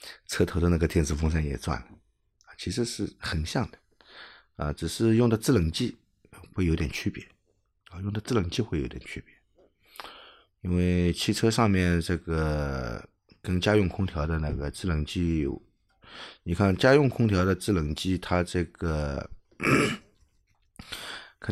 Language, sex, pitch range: Chinese, male, 85-110 Hz